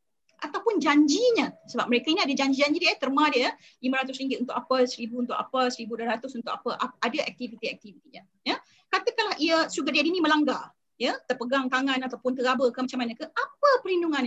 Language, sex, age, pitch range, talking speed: Malay, female, 30-49, 250-340 Hz, 175 wpm